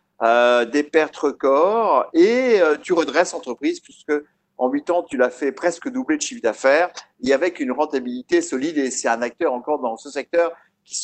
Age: 50-69